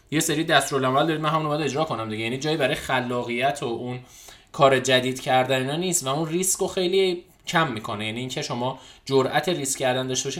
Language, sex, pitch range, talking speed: Persian, male, 130-185 Hz, 195 wpm